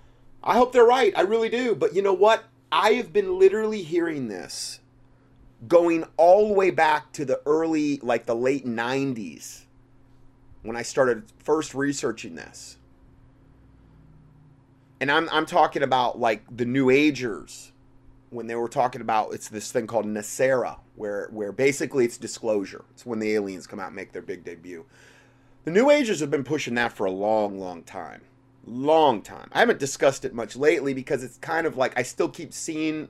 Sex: male